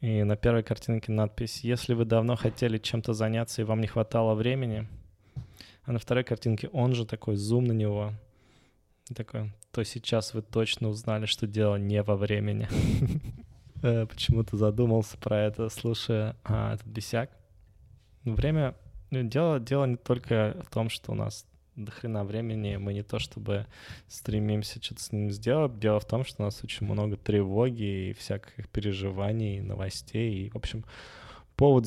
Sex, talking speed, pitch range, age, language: male, 155 wpm, 105-115 Hz, 20-39, Russian